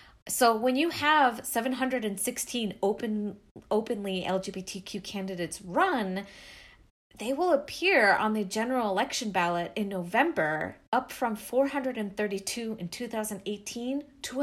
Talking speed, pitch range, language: 95 wpm, 195-255 Hz, English